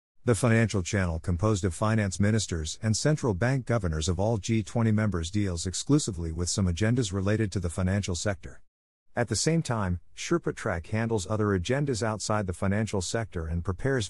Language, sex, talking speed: English, male, 170 wpm